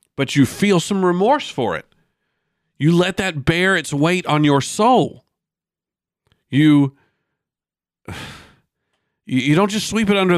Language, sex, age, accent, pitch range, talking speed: English, male, 50-69, American, 130-175 Hz, 135 wpm